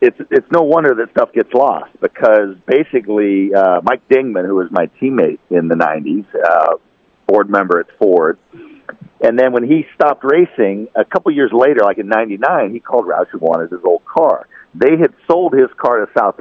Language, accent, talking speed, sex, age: English, American, 195 wpm, male, 50-69